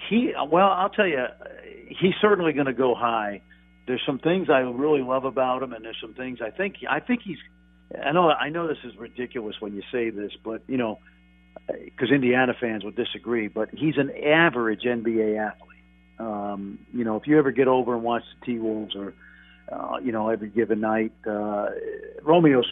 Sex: male